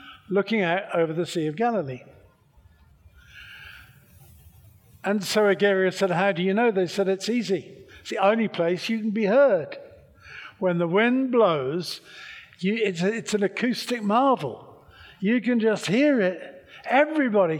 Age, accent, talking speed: 50-69, British, 145 wpm